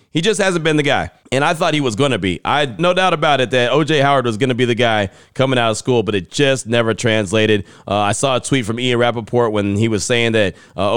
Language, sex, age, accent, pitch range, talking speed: English, male, 30-49, American, 110-130 Hz, 285 wpm